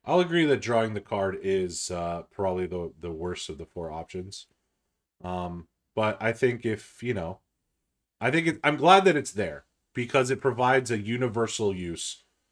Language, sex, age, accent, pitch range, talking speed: English, male, 30-49, American, 95-125 Hz, 175 wpm